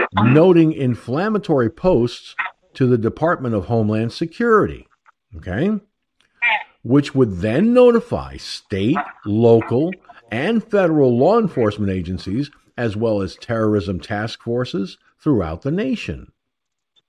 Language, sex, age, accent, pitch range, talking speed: English, male, 50-69, American, 110-170 Hz, 105 wpm